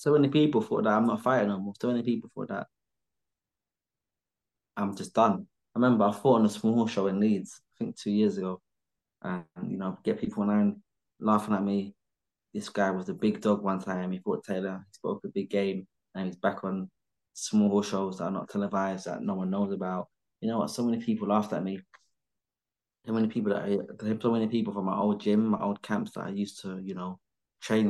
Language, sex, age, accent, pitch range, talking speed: English, male, 20-39, British, 95-105 Hz, 220 wpm